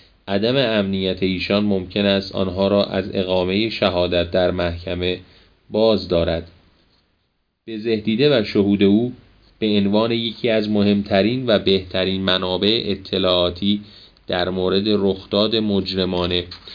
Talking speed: 115 wpm